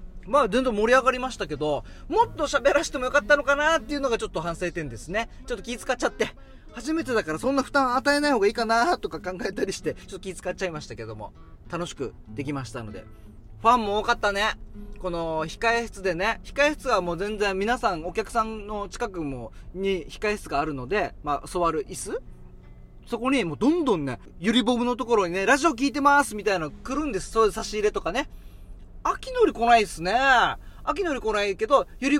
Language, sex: Japanese, male